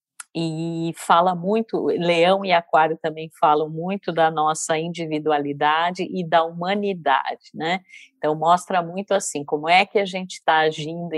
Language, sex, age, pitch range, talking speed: Portuguese, female, 50-69, 160-215 Hz, 145 wpm